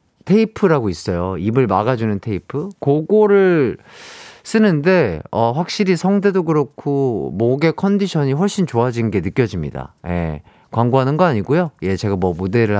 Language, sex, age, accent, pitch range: Korean, male, 30-49, native, 110-180 Hz